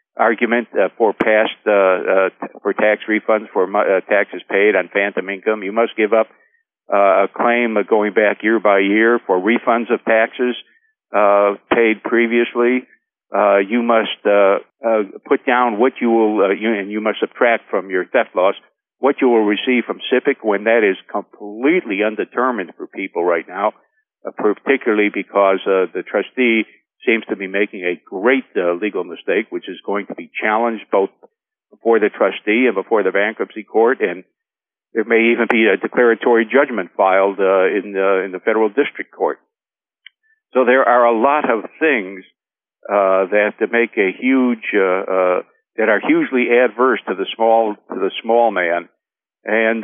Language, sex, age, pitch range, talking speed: English, male, 60-79, 105-130 Hz, 175 wpm